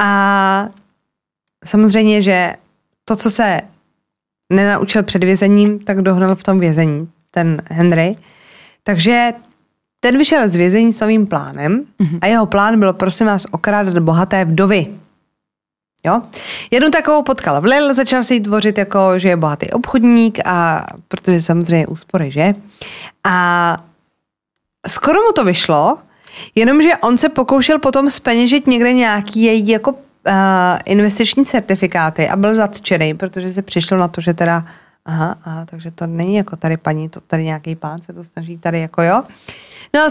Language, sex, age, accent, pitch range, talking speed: Czech, female, 20-39, native, 175-225 Hz, 155 wpm